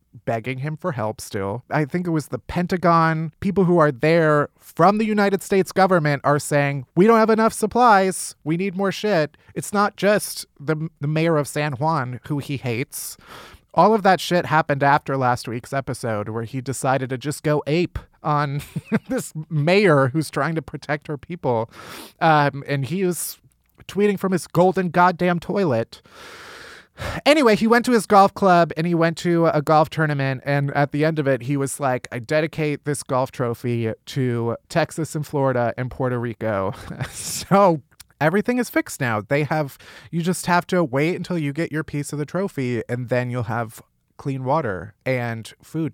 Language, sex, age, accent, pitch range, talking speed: English, male, 30-49, American, 135-185 Hz, 185 wpm